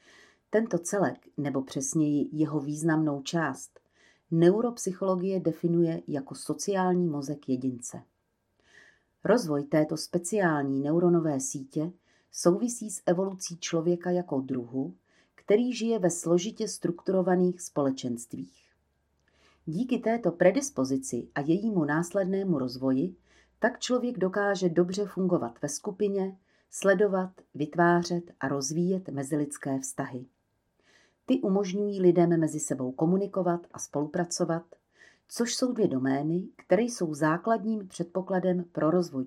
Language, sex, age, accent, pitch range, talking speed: Czech, female, 40-59, native, 140-185 Hz, 105 wpm